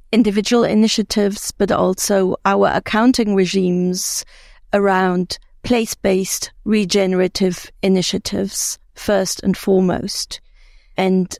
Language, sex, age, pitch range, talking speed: English, female, 40-59, 190-220 Hz, 80 wpm